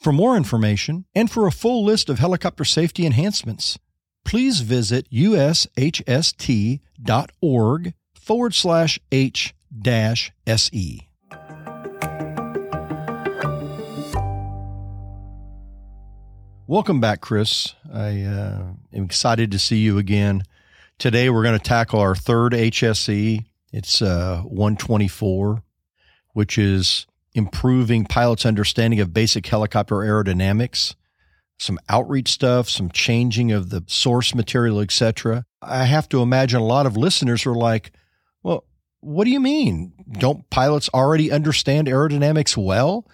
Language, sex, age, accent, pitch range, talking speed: English, male, 50-69, American, 100-140 Hz, 110 wpm